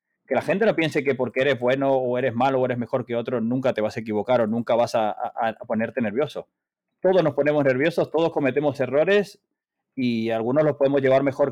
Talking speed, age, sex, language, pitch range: 225 wpm, 30-49, male, Spanish, 125-145 Hz